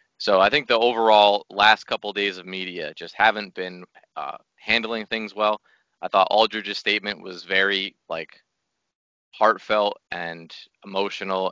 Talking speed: 145 wpm